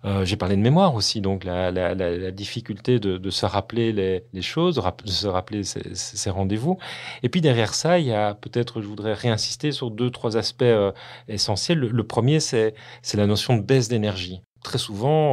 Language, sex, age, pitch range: French, male, 40-59, 100-125 Hz